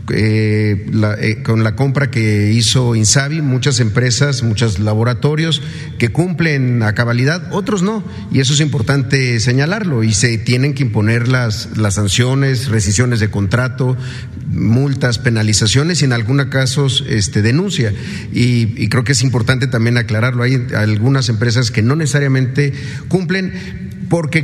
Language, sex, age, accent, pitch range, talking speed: Spanish, male, 40-59, Mexican, 115-145 Hz, 140 wpm